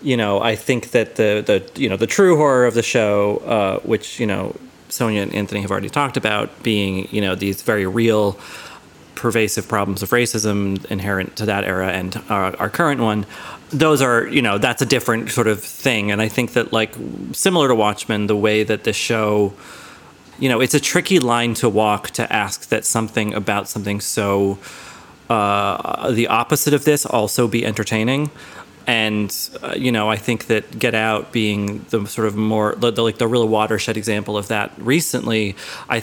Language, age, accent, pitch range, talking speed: English, 30-49, American, 105-125 Hz, 195 wpm